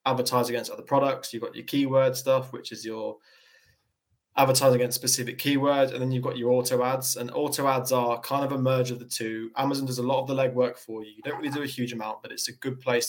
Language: English